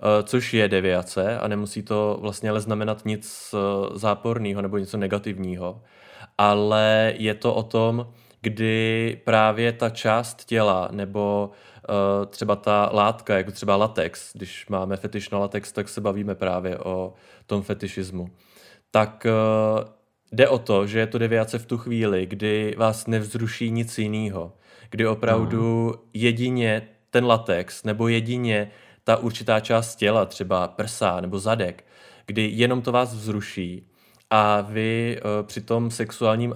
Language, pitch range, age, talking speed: Czech, 105-115 Hz, 20-39, 140 wpm